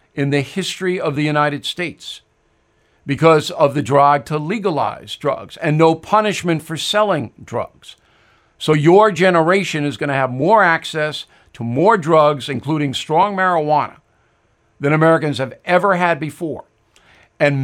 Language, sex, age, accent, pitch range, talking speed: English, male, 50-69, American, 140-180 Hz, 140 wpm